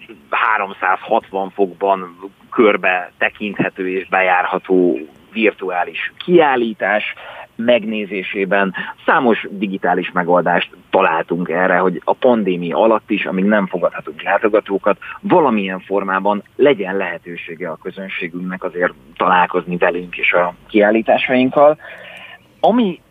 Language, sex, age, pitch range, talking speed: Hungarian, male, 30-49, 95-125 Hz, 95 wpm